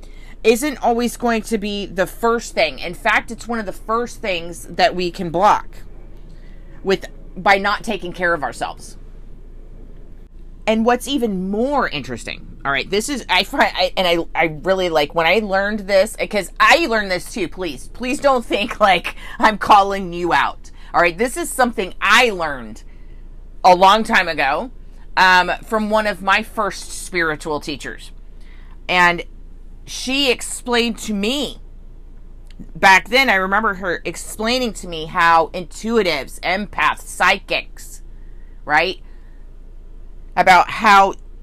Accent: American